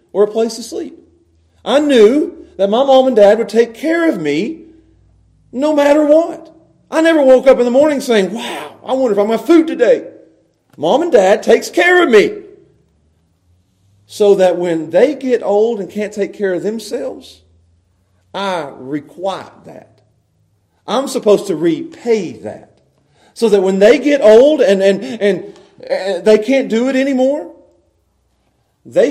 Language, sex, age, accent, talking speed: English, male, 40-59, American, 165 wpm